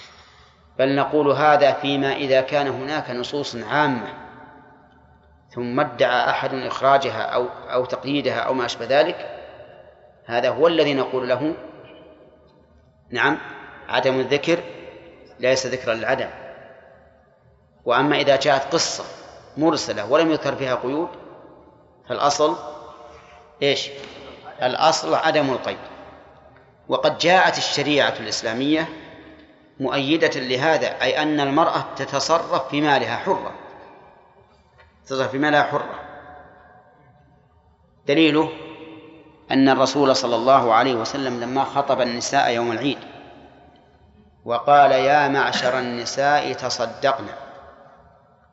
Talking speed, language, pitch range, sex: 100 wpm, Arabic, 125-145 Hz, male